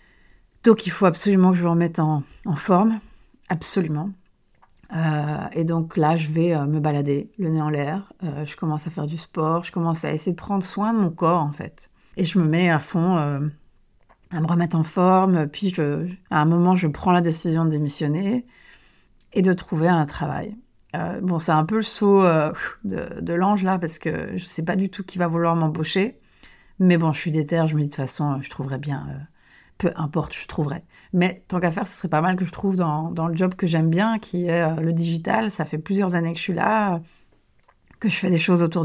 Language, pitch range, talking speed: French, 160-190 Hz, 235 wpm